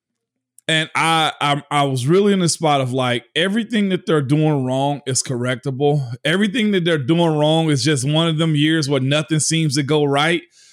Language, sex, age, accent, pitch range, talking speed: English, male, 20-39, American, 150-190 Hz, 195 wpm